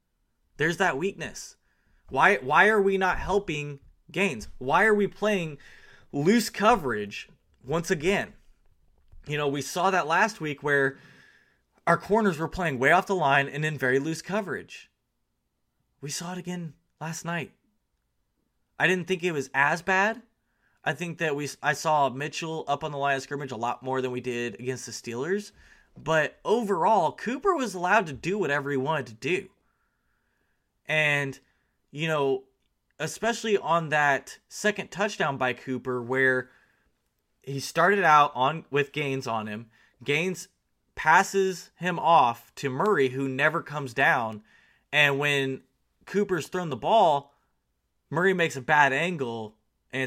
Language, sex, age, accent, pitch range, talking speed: English, male, 20-39, American, 130-185 Hz, 150 wpm